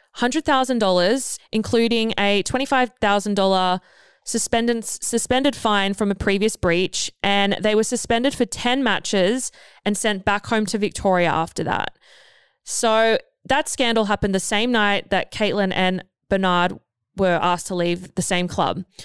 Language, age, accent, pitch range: English, 20-39, Australian, 195-245 Hz